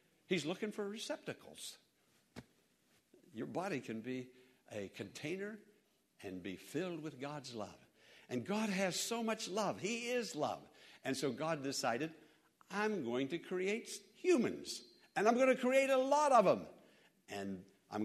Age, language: 60-79, English